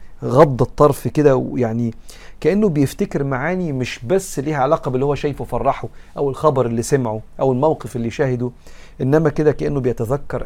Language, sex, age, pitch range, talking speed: Arabic, male, 50-69, 120-155 Hz, 155 wpm